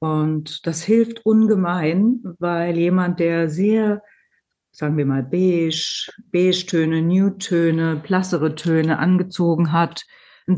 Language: German